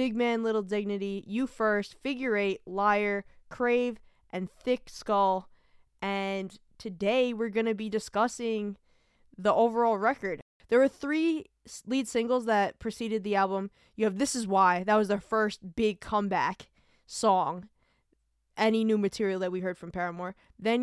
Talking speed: 155 wpm